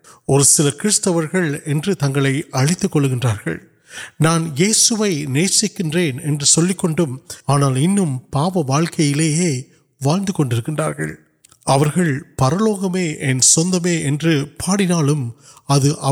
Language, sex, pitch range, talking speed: Urdu, male, 140-180 Hz, 50 wpm